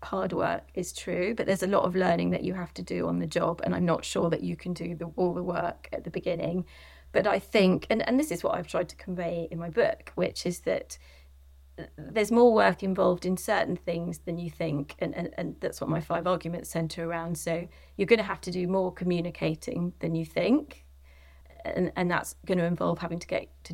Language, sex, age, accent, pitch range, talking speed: English, female, 30-49, British, 170-225 Hz, 235 wpm